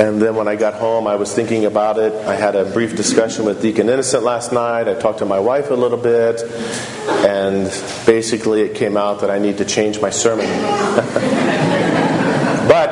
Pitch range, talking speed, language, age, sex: 110-130 Hz, 195 wpm, English, 40-59, male